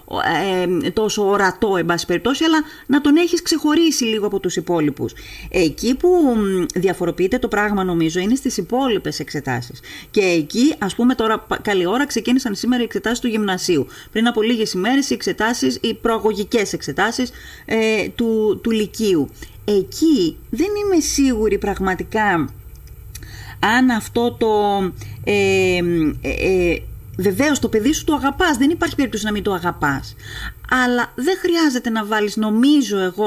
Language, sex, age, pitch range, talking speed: Greek, female, 30-49, 180-240 Hz, 145 wpm